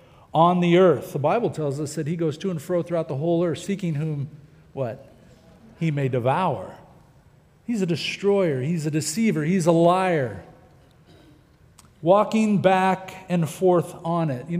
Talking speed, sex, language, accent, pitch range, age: 160 wpm, male, English, American, 160-195 Hz, 50-69